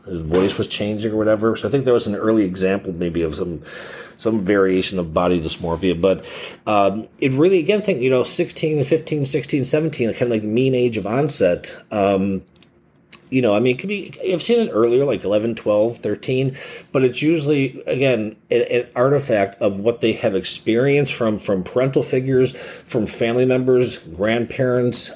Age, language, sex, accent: 40-59, English, male, American